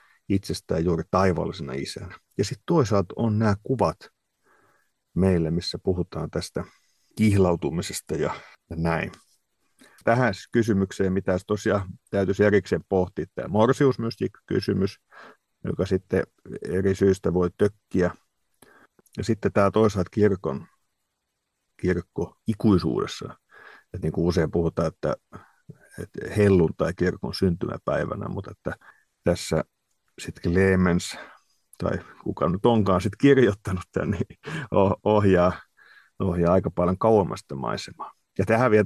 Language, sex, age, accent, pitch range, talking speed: Finnish, male, 50-69, native, 90-110 Hz, 115 wpm